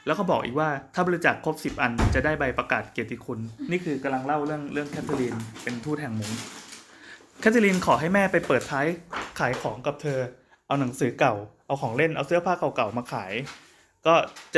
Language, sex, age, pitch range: Thai, male, 20-39, 125-165 Hz